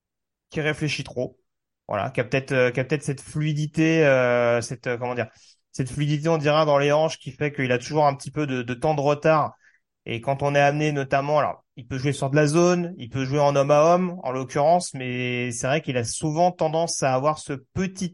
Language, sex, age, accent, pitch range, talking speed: French, male, 30-49, French, 125-155 Hz, 240 wpm